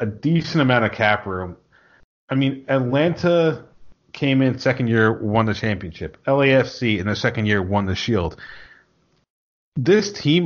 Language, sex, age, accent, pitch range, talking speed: English, male, 30-49, American, 105-135 Hz, 150 wpm